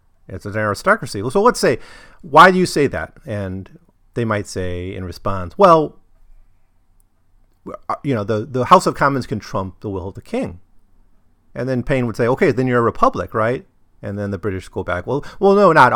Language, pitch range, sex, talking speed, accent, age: English, 95-130 Hz, male, 200 wpm, American, 40-59